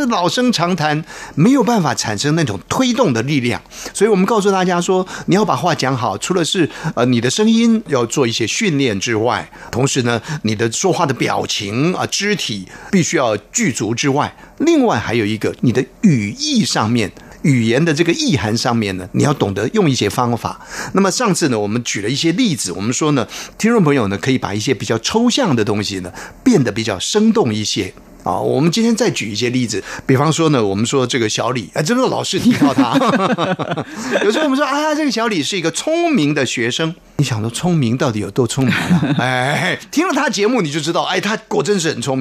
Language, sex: Chinese, male